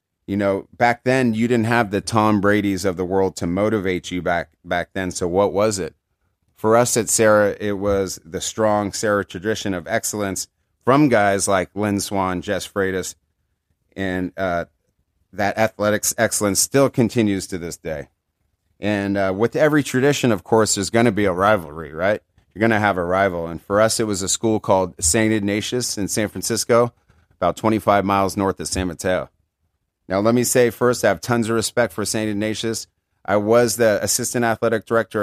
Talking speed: 190 wpm